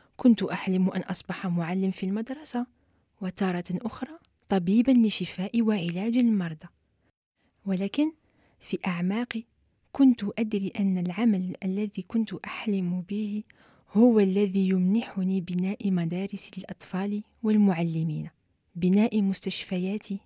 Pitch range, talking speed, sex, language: 180-215 Hz, 100 wpm, female, French